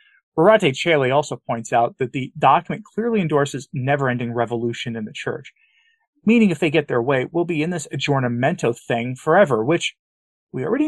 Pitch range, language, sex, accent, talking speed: 135-200 Hz, English, male, American, 170 wpm